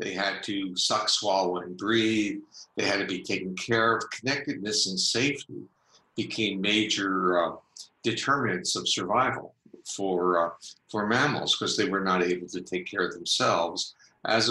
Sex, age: male, 60-79